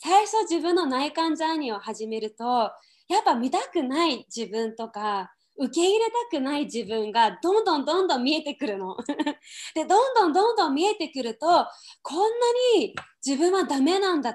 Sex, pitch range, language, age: female, 250-360 Hz, Japanese, 20-39